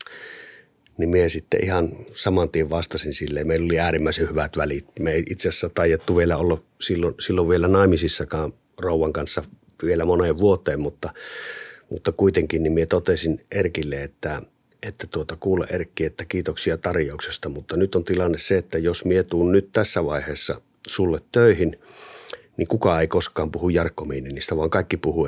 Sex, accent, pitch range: male, native, 80-100 Hz